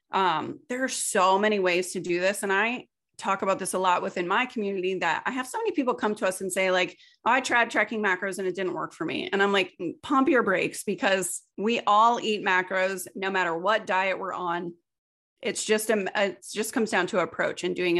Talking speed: 235 wpm